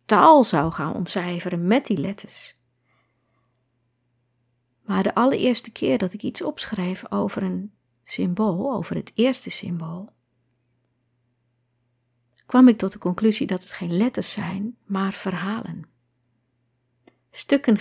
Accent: Dutch